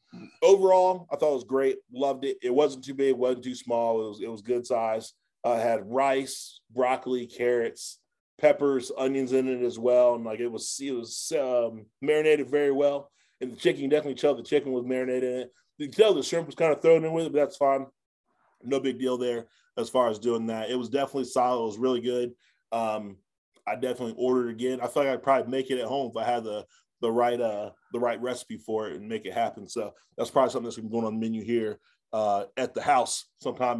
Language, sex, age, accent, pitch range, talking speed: English, male, 20-39, American, 115-140 Hz, 235 wpm